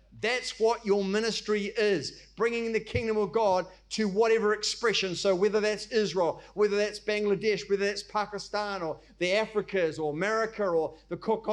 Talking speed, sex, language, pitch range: 160 wpm, male, English, 205-250 Hz